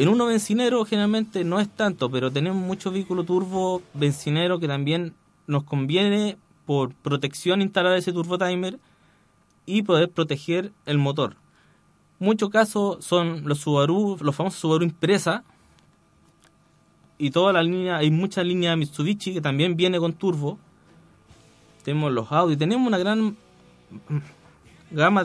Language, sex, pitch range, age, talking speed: Spanish, male, 145-190 Hz, 20-39, 130 wpm